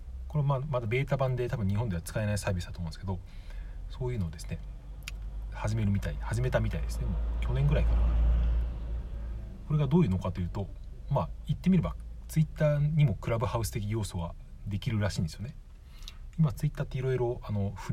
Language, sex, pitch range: Japanese, male, 80-115 Hz